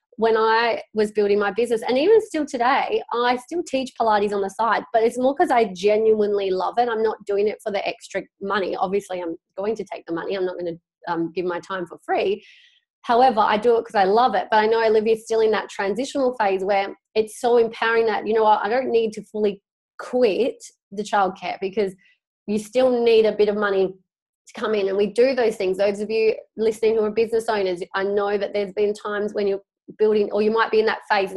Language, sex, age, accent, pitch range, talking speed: English, female, 20-39, Australian, 205-240 Hz, 235 wpm